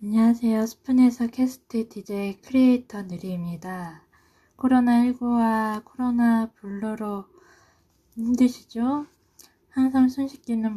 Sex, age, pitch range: female, 20-39, 200-245 Hz